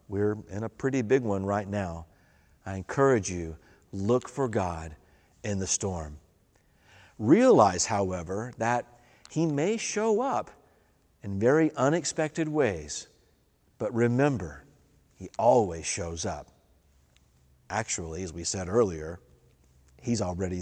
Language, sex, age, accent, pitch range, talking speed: English, male, 50-69, American, 90-120 Hz, 120 wpm